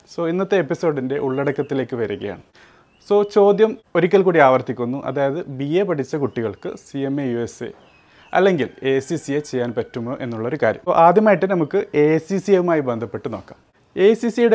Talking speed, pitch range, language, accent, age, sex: 150 wpm, 125-160 Hz, Malayalam, native, 30-49, male